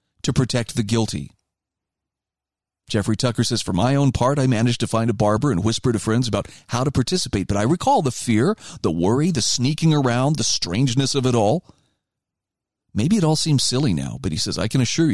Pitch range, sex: 115-150 Hz, male